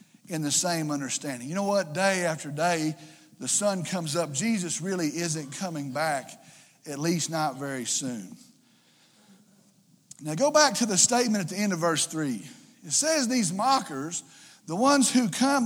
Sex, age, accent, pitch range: male, 50-69, American, 190-255 Hz